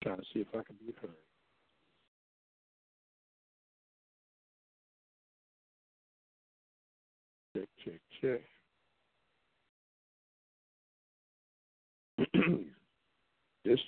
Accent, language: American, English